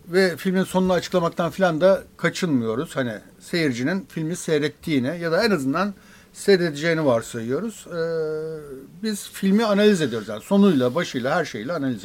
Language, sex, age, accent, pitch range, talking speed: Turkish, male, 60-79, native, 140-195 Hz, 140 wpm